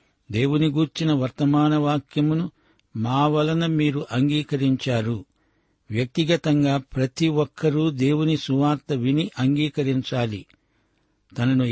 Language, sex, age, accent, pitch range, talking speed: Telugu, male, 60-79, native, 130-150 Hz, 75 wpm